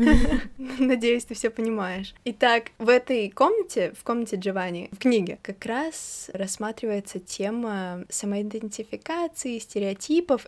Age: 20-39